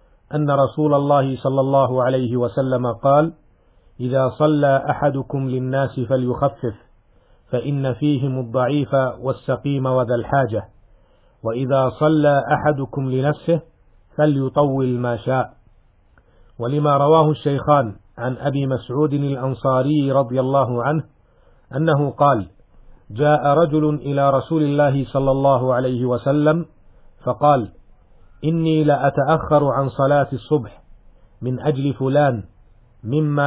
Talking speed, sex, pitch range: 100 wpm, male, 125-145 Hz